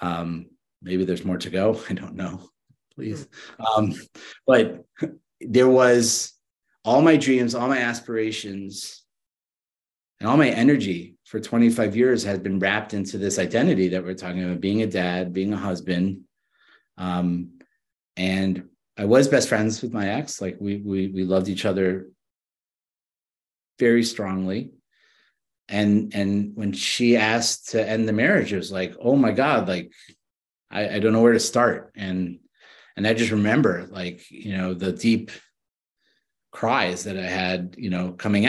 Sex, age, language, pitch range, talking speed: male, 30-49, English, 95-110 Hz, 155 wpm